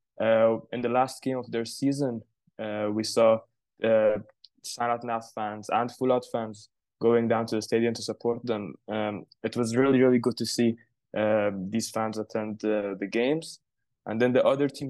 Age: 20-39